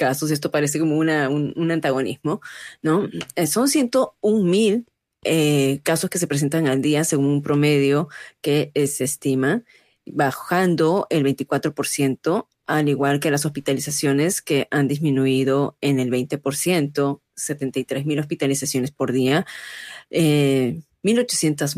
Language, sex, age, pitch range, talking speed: Spanish, female, 30-49, 140-170 Hz, 130 wpm